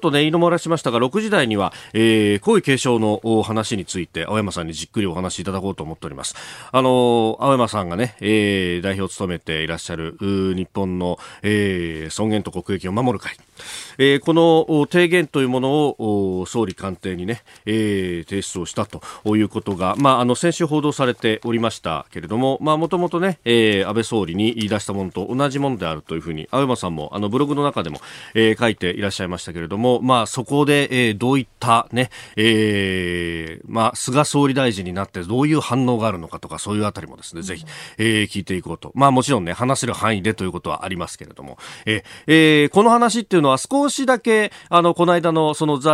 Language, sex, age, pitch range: Japanese, male, 40-59, 95-135 Hz